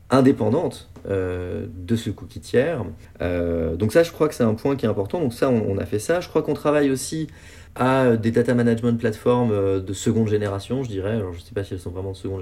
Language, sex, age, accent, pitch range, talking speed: French, male, 30-49, French, 95-115 Hz, 245 wpm